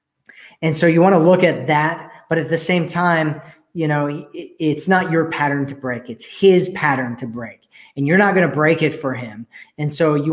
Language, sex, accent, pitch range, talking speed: English, male, American, 140-170 Hz, 220 wpm